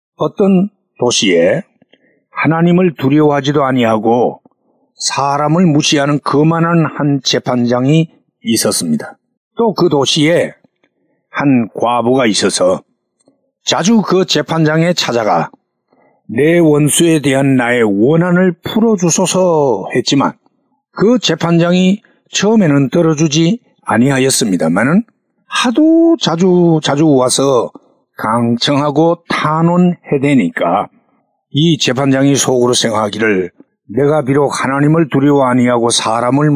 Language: Korean